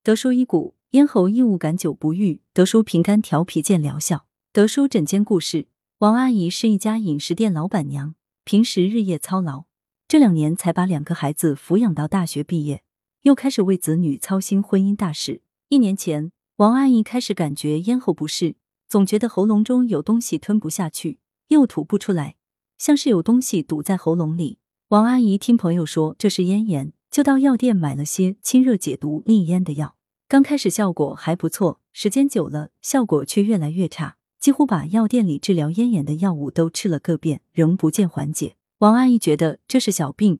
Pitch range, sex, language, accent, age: 160-220 Hz, female, Chinese, native, 30-49